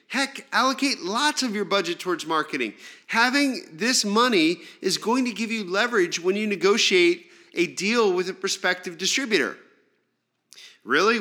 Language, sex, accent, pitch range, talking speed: English, male, American, 165-230 Hz, 145 wpm